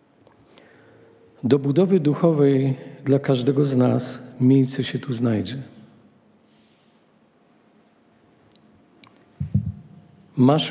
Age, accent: 50-69, native